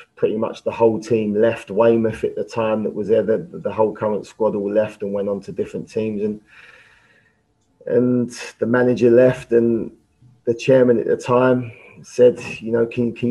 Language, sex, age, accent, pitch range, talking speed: English, male, 30-49, British, 100-120 Hz, 190 wpm